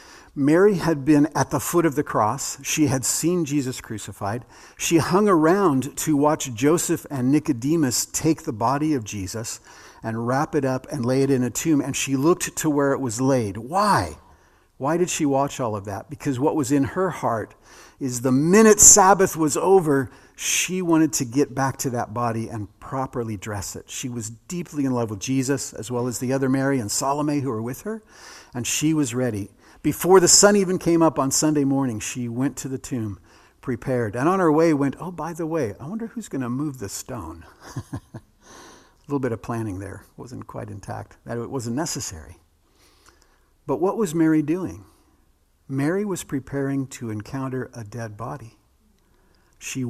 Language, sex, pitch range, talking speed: English, male, 115-155 Hz, 190 wpm